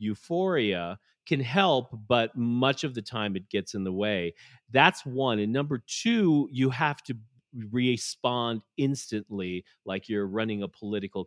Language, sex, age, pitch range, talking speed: English, male, 40-59, 95-135 Hz, 150 wpm